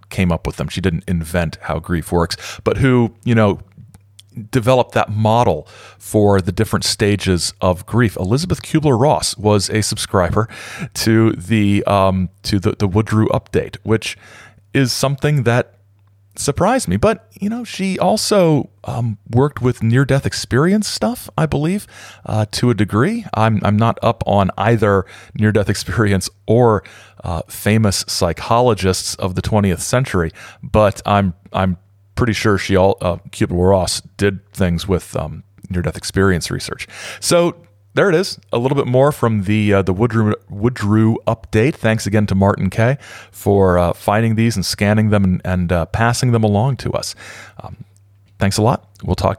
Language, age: English, 40-59